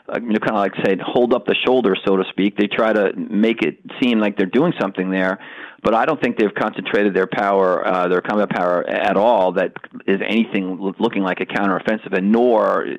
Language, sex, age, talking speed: English, male, 40-59, 215 wpm